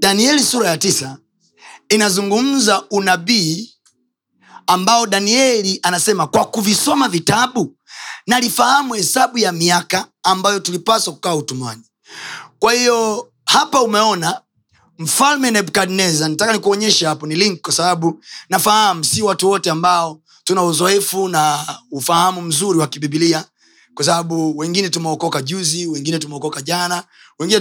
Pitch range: 155-200 Hz